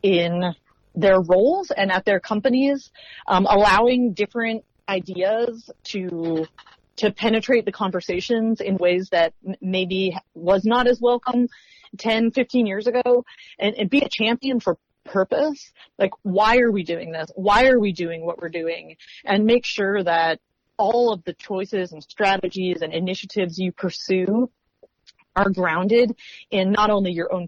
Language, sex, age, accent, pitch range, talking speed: English, female, 30-49, American, 180-230 Hz, 155 wpm